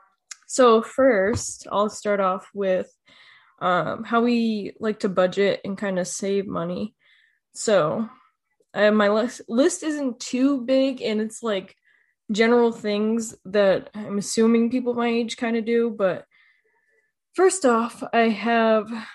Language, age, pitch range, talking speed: English, 10-29, 195-235 Hz, 140 wpm